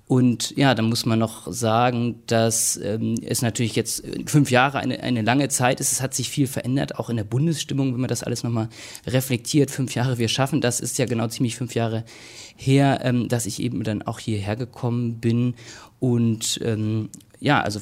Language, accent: German, German